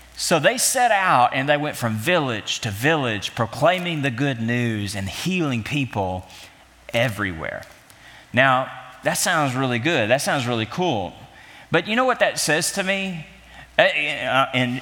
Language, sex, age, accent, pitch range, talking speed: English, male, 30-49, American, 125-175 Hz, 150 wpm